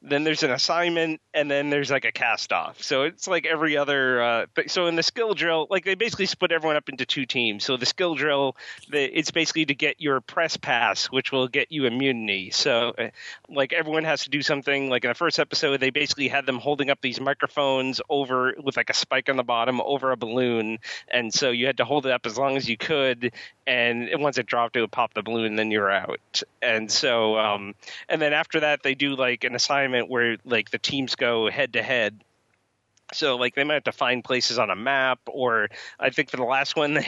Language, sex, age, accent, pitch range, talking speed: English, male, 30-49, American, 120-150 Hz, 230 wpm